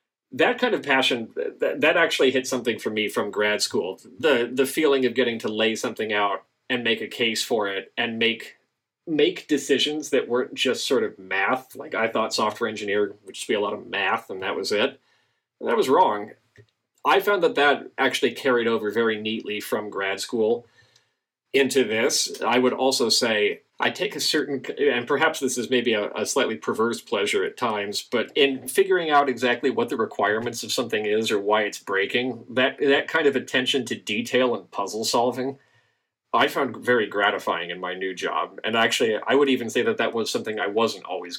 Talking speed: 200 wpm